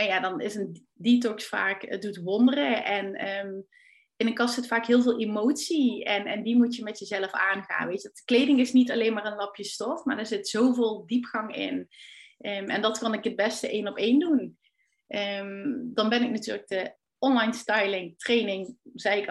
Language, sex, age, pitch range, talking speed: Dutch, female, 30-49, 195-235 Hz, 205 wpm